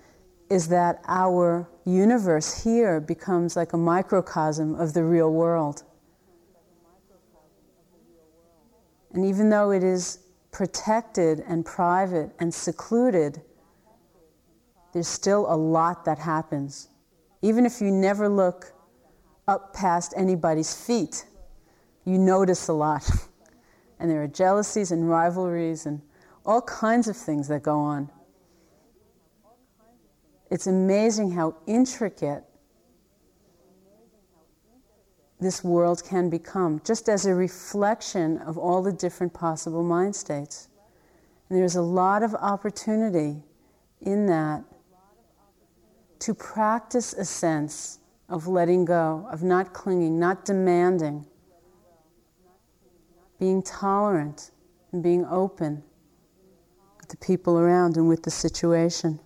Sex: female